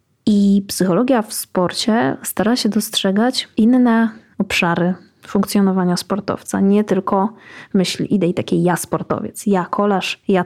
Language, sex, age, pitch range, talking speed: Polish, female, 20-39, 185-215 Hz, 120 wpm